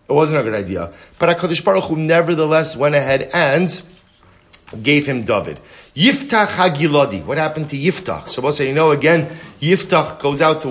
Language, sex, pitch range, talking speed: English, male, 125-165 Hz, 180 wpm